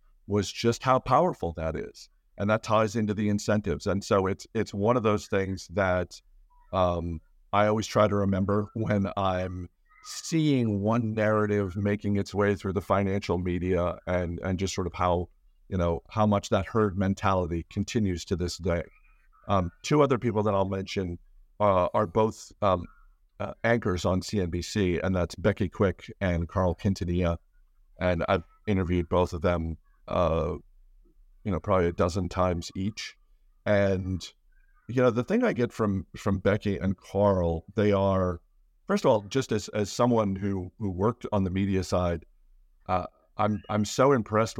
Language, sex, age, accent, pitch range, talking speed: English, male, 50-69, American, 90-110 Hz, 170 wpm